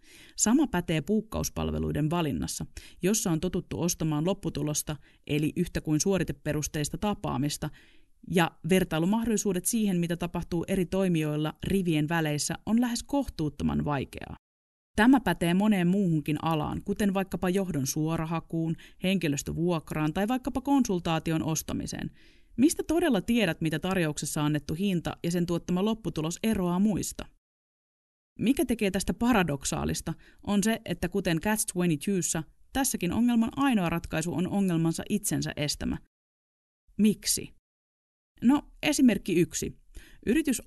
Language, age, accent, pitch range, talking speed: Finnish, 30-49, native, 155-205 Hz, 115 wpm